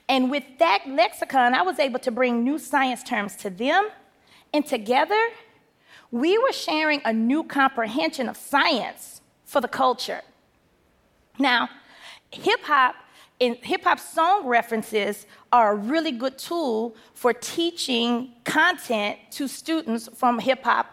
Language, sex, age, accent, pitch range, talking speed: English, female, 40-59, American, 240-325 Hz, 130 wpm